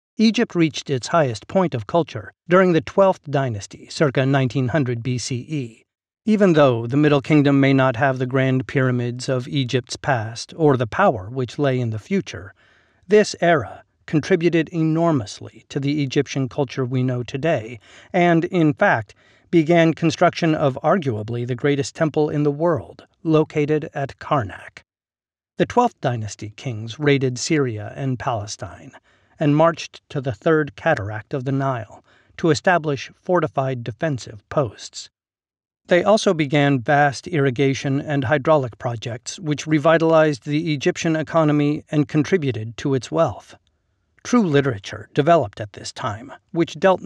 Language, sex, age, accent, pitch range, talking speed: English, male, 40-59, American, 125-160 Hz, 140 wpm